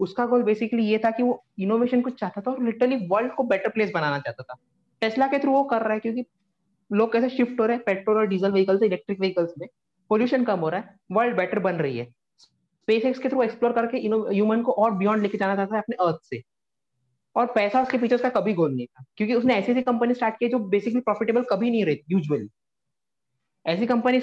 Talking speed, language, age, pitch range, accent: 205 wpm, Hindi, 30-49, 185-235 Hz, native